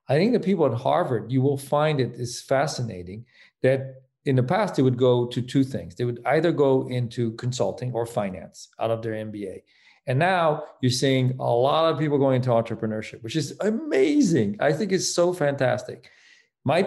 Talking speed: 190 wpm